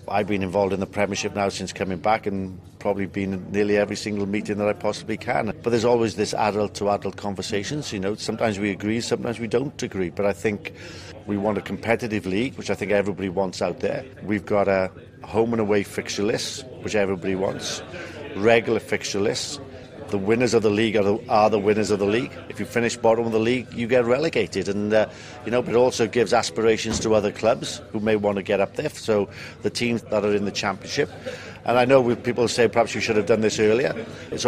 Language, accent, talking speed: English, British, 225 wpm